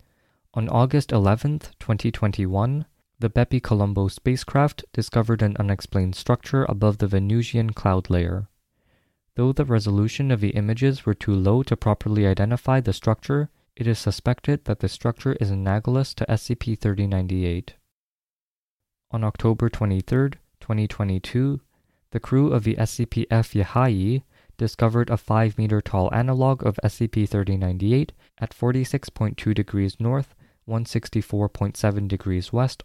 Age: 20-39